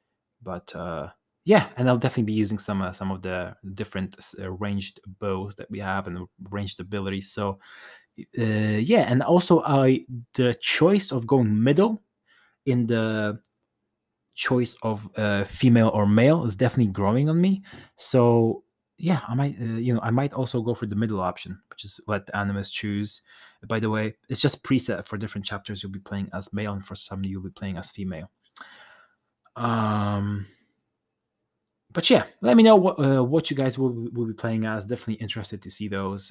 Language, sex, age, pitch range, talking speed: English, male, 20-39, 100-130 Hz, 185 wpm